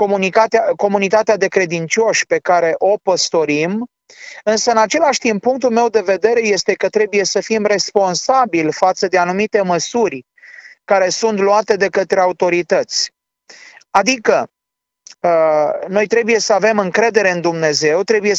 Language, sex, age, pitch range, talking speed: Romanian, male, 30-49, 180-230 Hz, 135 wpm